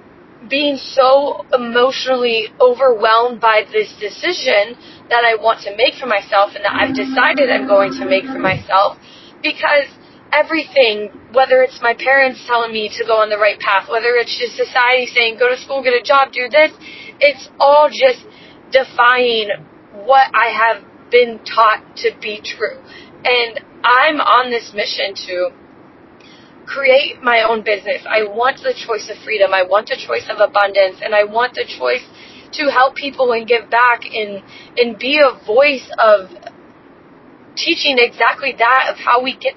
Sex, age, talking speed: female, 20-39, 165 wpm